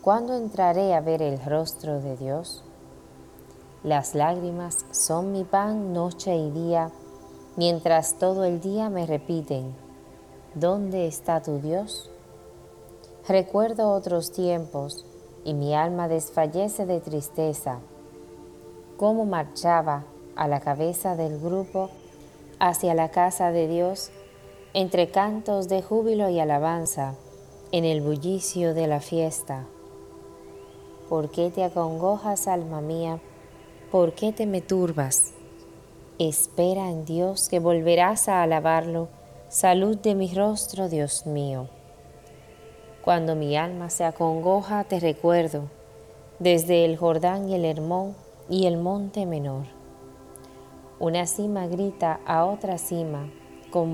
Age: 20-39